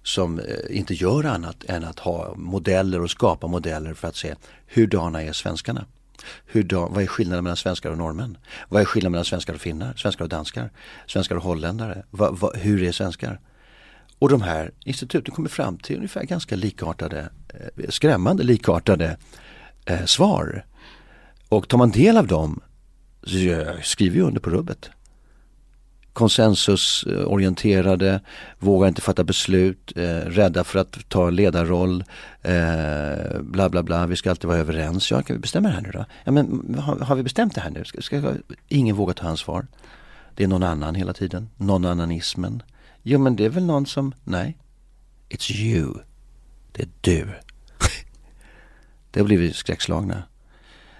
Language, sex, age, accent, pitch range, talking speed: Swedish, male, 40-59, native, 85-110 Hz, 165 wpm